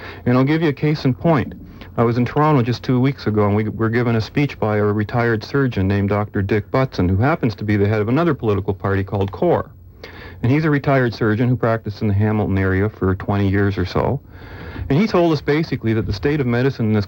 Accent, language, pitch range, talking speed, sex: American, English, 100-130 Hz, 245 wpm, male